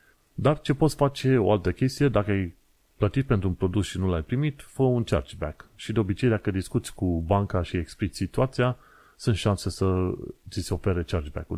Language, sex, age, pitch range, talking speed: Romanian, male, 30-49, 90-110 Hz, 190 wpm